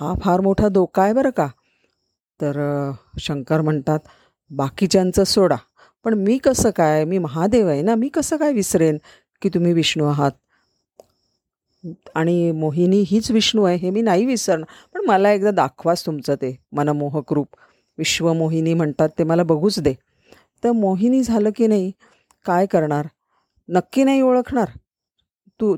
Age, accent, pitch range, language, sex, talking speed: 40-59, native, 160-210 Hz, Marathi, female, 145 wpm